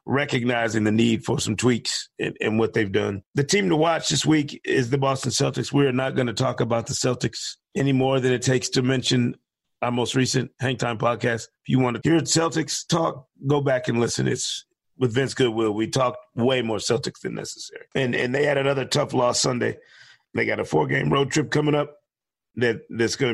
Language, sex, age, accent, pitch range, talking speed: English, male, 40-59, American, 115-140 Hz, 210 wpm